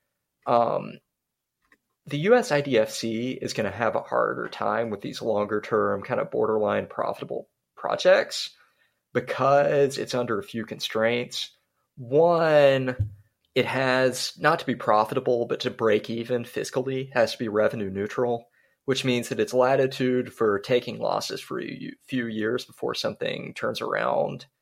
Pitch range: 110-145 Hz